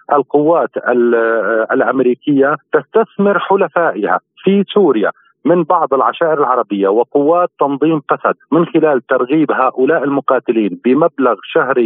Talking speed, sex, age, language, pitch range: 100 wpm, male, 40-59, Arabic, 130-165 Hz